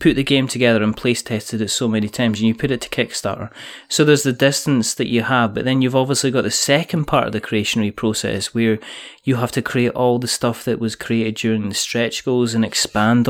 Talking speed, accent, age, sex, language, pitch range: 240 wpm, British, 30-49, male, English, 110-135 Hz